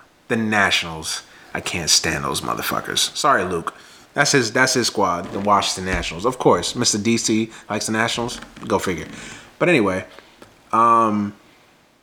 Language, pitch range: English, 105-140 Hz